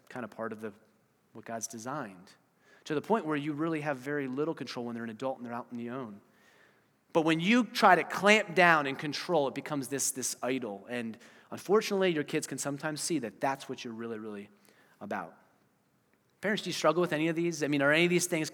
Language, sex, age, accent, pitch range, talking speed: English, male, 30-49, American, 140-175 Hz, 230 wpm